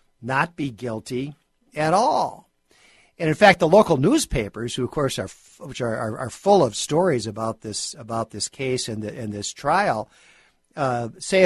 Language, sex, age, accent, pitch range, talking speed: English, male, 50-69, American, 115-145 Hz, 180 wpm